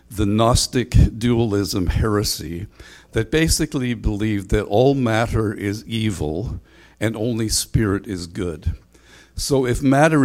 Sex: male